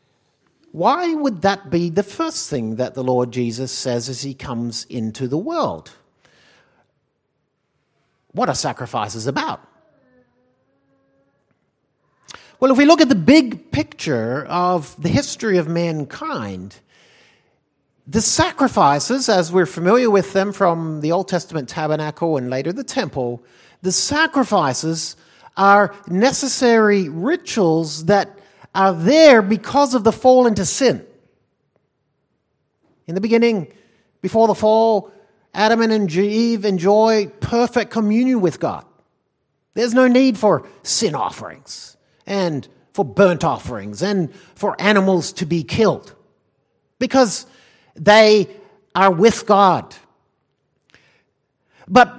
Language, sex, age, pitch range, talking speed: English, male, 50-69, 160-235 Hz, 115 wpm